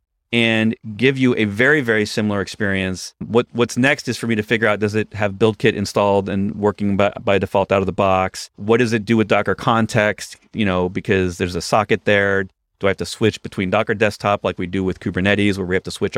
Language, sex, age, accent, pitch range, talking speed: English, male, 30-49, American, 95-110 Hz, 235 wpm